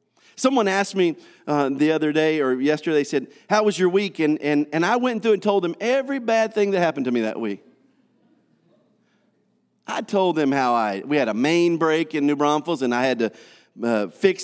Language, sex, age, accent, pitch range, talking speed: English, male, 40-59, American, 130-205 Hz, 215 wpm